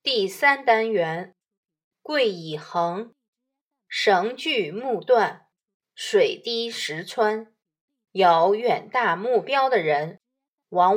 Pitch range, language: 185-290 Hz, Chinese